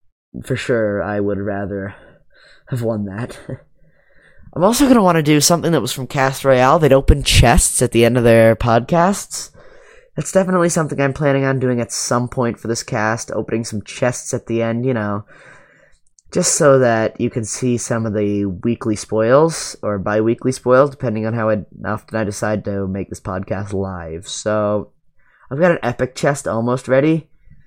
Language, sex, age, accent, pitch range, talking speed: English, male, 10-29, American, 110-135 Hz, 180 wpm